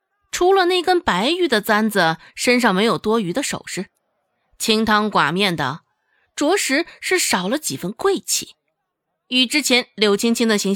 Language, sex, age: Chinese, female, 20-39